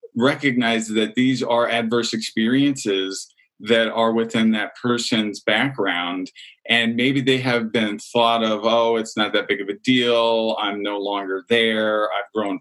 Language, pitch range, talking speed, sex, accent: English, 105-125 Hz, 155 wpm, male, American